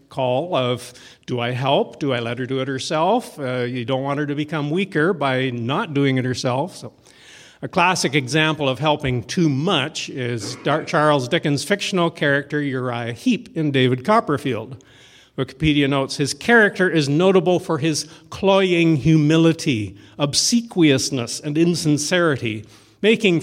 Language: English